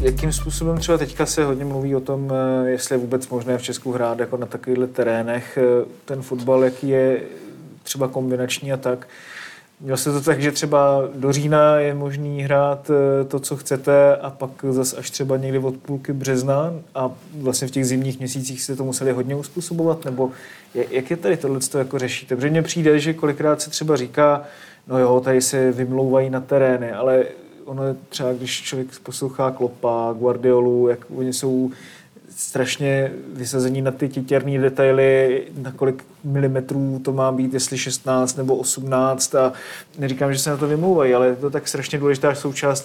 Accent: native